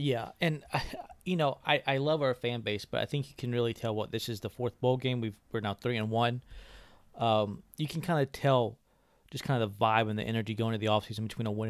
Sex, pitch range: male, 110-130 Hz